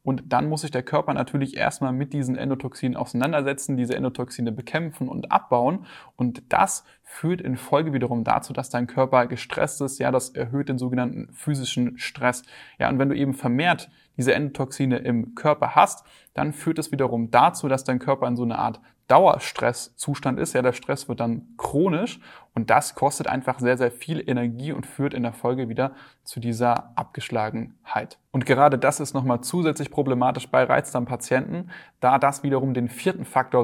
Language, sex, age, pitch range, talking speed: German, male, 10-29, 125-140 Hz, 175 wpm